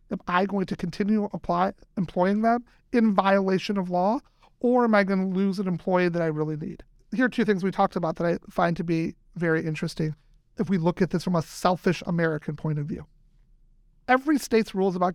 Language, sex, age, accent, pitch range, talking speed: English, male, 40-59, American, 155-215 Hz, 215 wpm